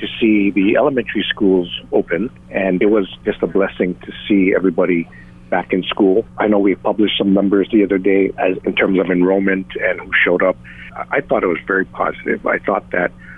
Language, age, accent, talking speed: English, 50-69, American, 200 wpm